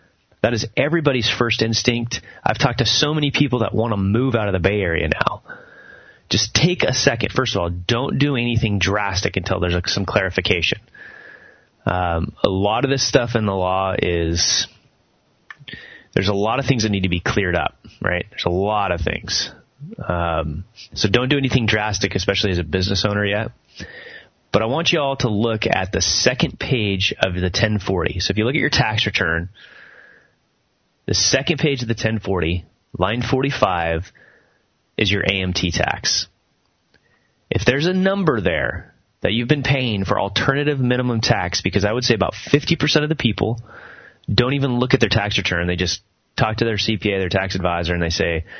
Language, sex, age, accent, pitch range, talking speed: English, male, 30-49, American, 95-125 Hz, 185 wpm